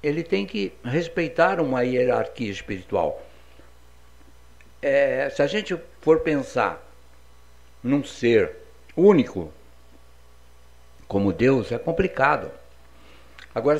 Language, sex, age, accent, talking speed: Portuguese, male, 60-79, Brazilian, 85 wpm